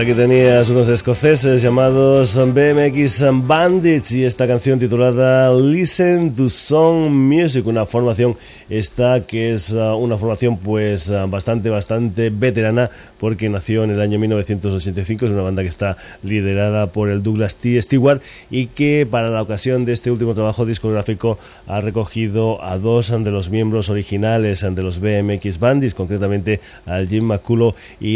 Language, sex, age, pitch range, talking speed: Spanish, male, 30-49, 105-125 Hz, 150 wpm